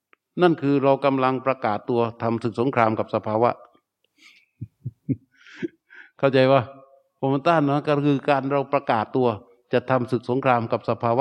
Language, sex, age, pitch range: Thai, male, 60-79, 115-150 Hz